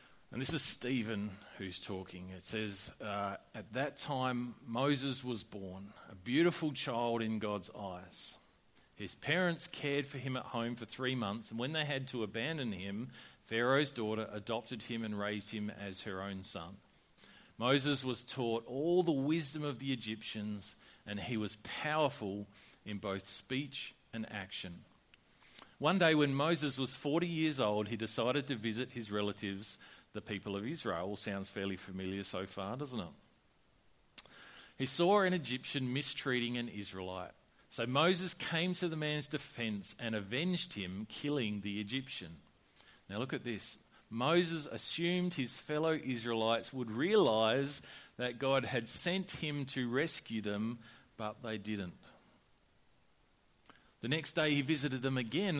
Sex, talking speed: male, 150 wpm